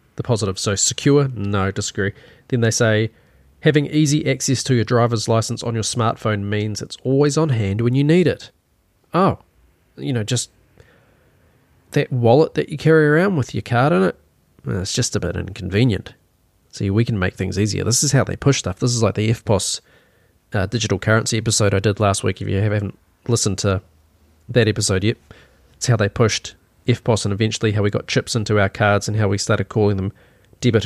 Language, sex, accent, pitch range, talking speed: English, male, Australian, 100-125 Hz, 200 wpm